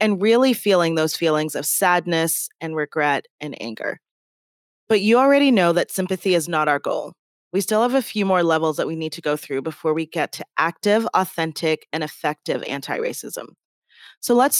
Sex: female